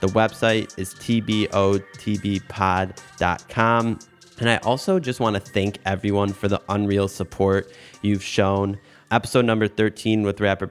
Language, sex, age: English, male, 20-39